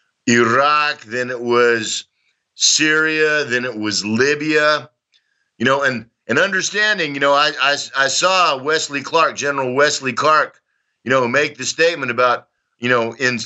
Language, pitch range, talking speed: English, 125-150 Hz, 150 wpm